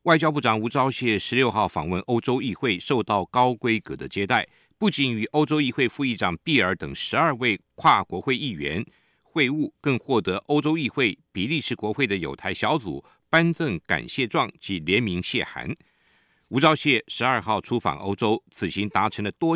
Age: 50-69